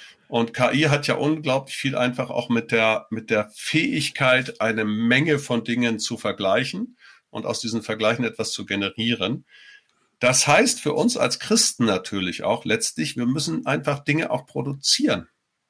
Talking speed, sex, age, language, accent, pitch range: 155 wpm, male, 50-69, German, German, 120-150 Hz